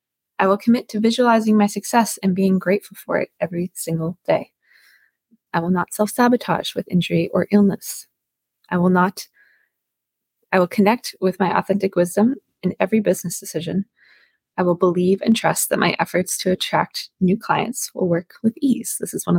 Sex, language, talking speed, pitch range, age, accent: female, English, 175 wpm, 175-225 Hz, 20-39, American